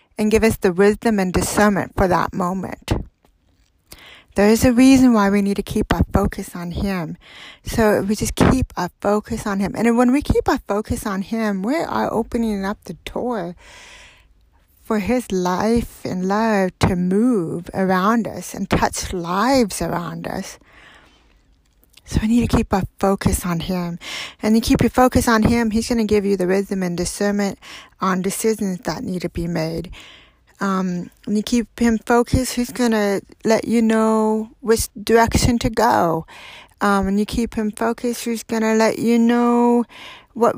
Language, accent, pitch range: English, American, 190-235 Hz